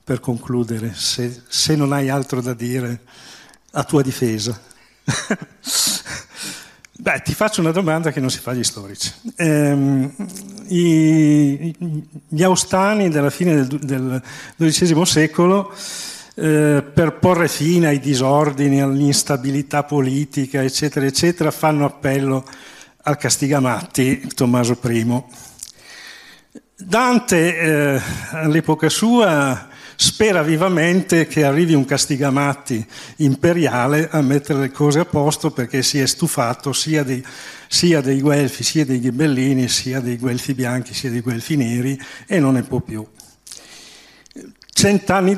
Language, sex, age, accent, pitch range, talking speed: Italian, male, 50-69, native, 130-160 Hz, 120 wpm